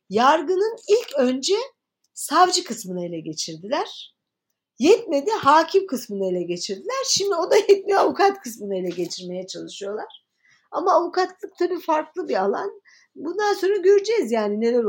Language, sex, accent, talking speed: Turkish, female, native, 130 wpm